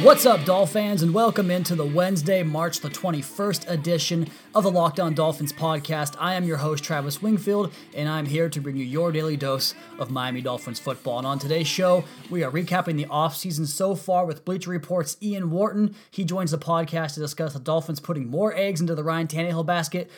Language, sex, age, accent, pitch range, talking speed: English, male, 20-39, American, 150-180 Hz, 205 wpm